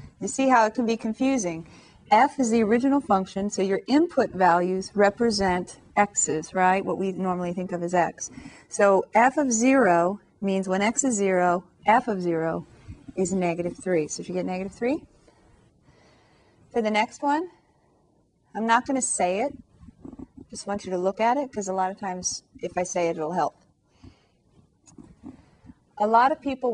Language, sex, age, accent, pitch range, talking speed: English, female, 40-59, American, 185-240 Hz, 175 wpm